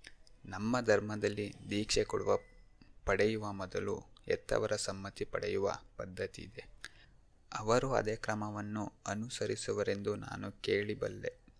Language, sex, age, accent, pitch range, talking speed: Kannada, male, 20-39, native, 95-115 Hz, 90 wpm